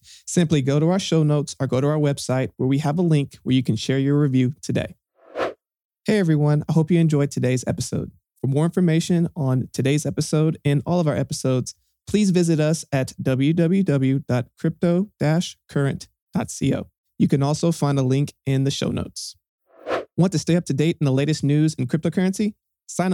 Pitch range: 125-160 Hz